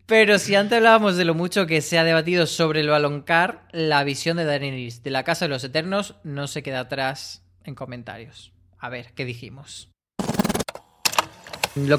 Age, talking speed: 20-39, 175 wpm